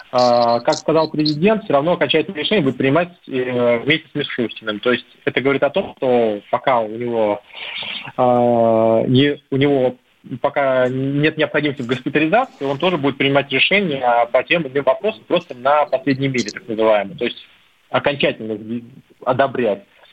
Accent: native